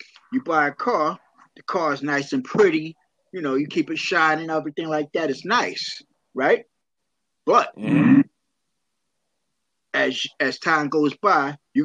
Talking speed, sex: 140 wpm, male